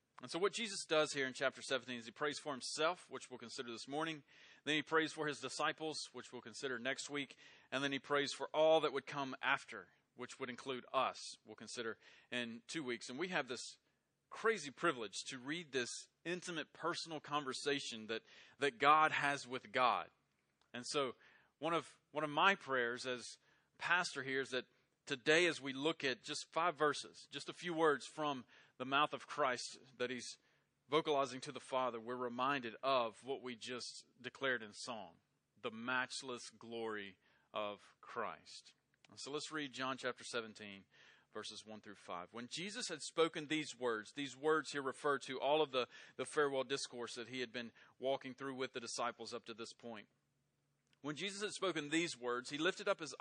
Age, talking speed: 30-49, 190 wpm